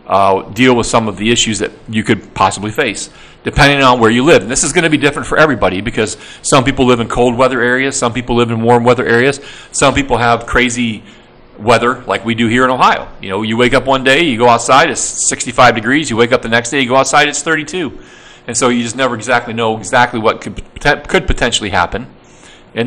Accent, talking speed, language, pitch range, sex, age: American, 235 wpm, English, 115-145 Hz, male, 40-59